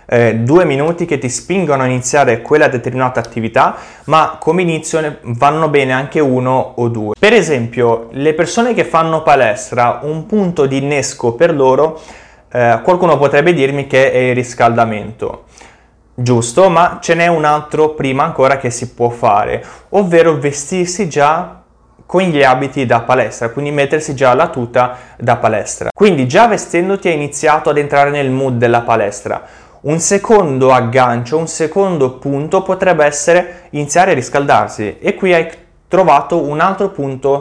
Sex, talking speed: male, 155 wpm